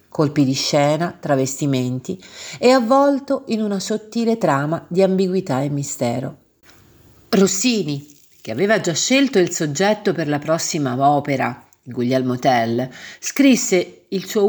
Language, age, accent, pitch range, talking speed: Italian, 50-69, native, 145-205 Hz, 125 wpm